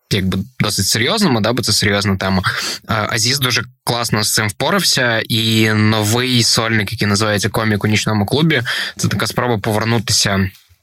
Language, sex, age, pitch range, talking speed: Ukrainian, male, 20-39, 100-115 Hz, 150 wpm